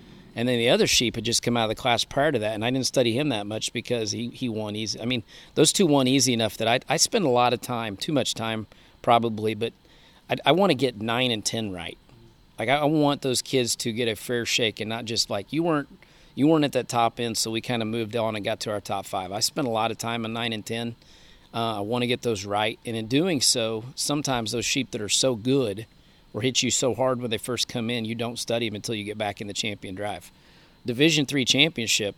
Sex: male